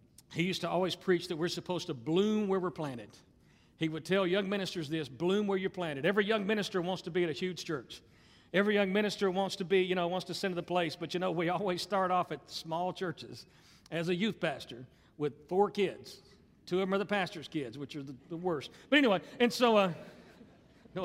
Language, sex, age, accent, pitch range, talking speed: English, male, 50-69, American, 180-255 Hz, 235 wpm